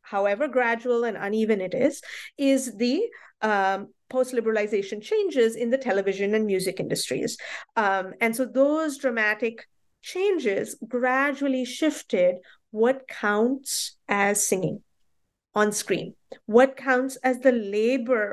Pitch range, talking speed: 200-260 Hz, 120 wpm